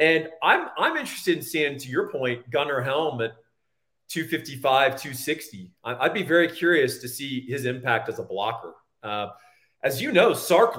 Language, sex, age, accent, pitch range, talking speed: English, male, 40-59, American, 120-160 Hz, 165 wpm